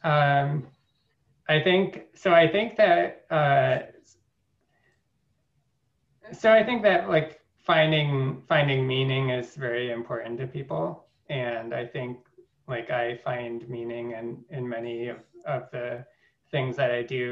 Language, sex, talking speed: English, male, 130 wpm